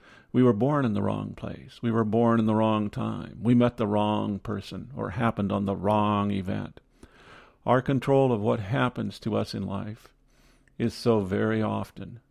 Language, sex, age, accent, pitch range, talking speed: English, male, 50-69, American, 100-120 Hz, 185 wpm